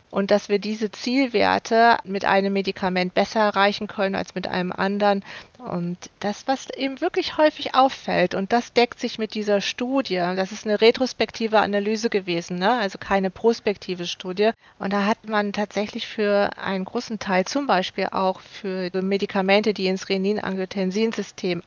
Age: 40-59